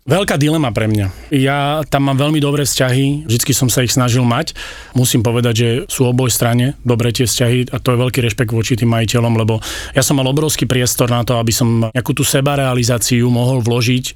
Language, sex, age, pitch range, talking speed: Slovak, male, 30-49, 120-145 Hz, 200 wpm